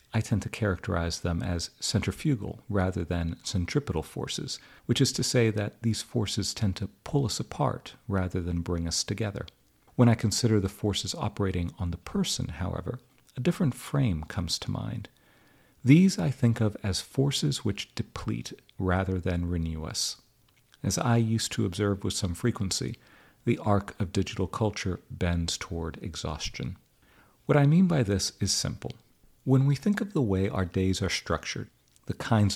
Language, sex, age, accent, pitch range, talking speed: English, male, 50-69, American, 90-120 Hz, 170 wpm